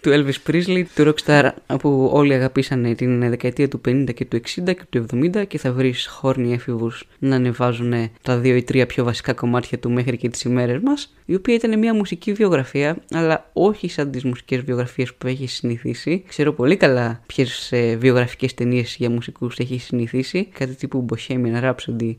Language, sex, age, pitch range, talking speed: Greek, female, 20-39, 125-150 Hz, 180 wpm